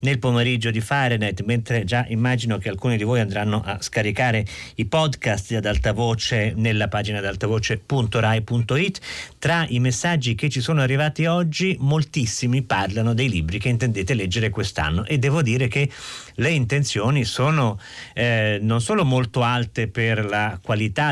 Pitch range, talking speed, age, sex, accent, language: 110-140 Hz, 155 wpm, 40-59, male, native, Italian